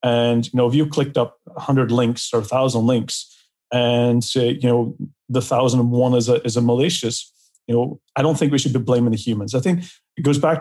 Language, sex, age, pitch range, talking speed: English, male, 40-59, 120-145 Hz, 220 wpm